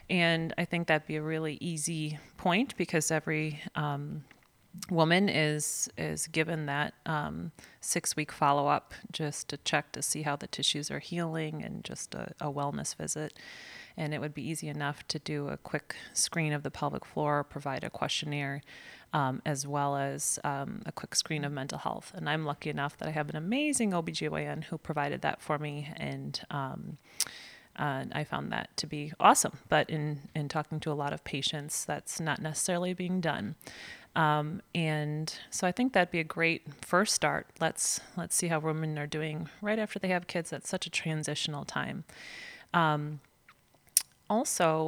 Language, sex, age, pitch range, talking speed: English, female, 30-49, 145-170 Hz, 180 wpm